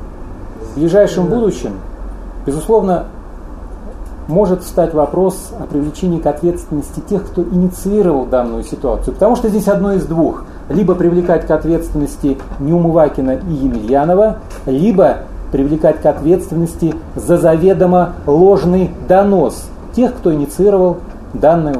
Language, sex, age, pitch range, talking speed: Russian, male, 40-59, 150-190 Hz, 115 wpm